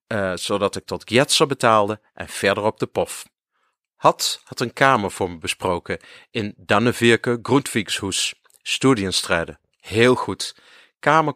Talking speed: 130 wpm